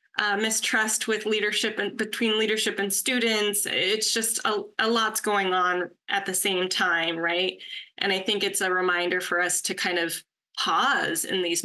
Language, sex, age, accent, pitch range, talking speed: English, female, 20-39, American, 185-235 Hz, 180 wpm